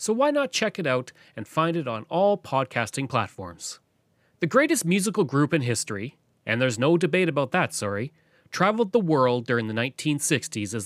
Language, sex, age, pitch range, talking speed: English, male, 30-49, 125-175 Hz, 180 wpm